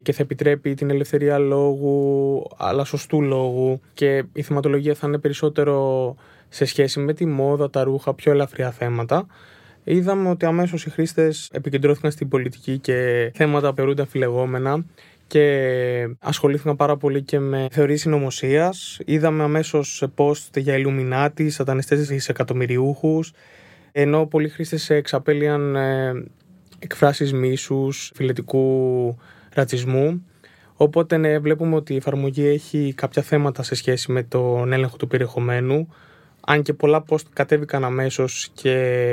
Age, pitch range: 20-39, 125-150 Hz